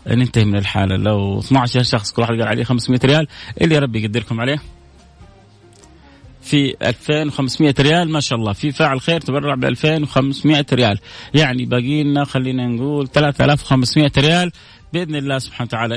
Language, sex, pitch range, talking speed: Arabic, male, 115-150 Hz, 150 wpm